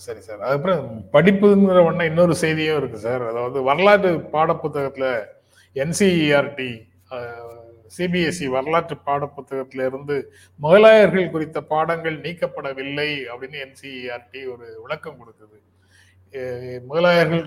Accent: native